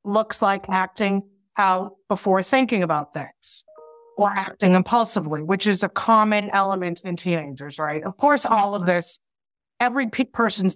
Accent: American